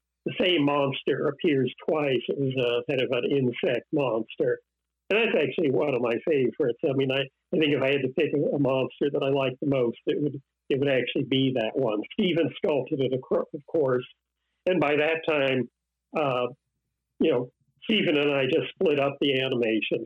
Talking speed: 195 wpm